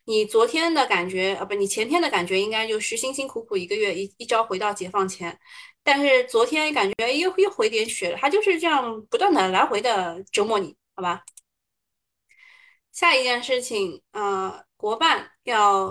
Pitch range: 210-350 Hz